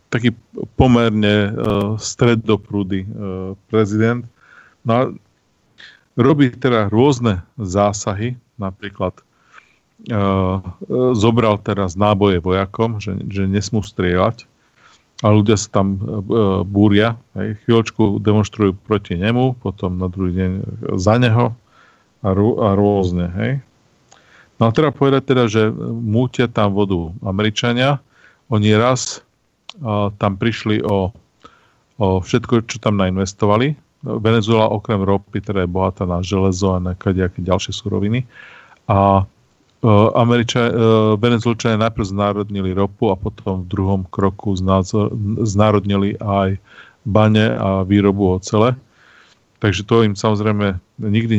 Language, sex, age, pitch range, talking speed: Slovak, male, 40-59, 100-115 Hz, 120 wpm